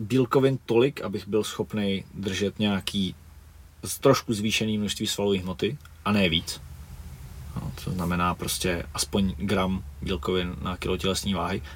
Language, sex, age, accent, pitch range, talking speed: Czech, male, 30-49, native, 85-110 Hz, 130 wpm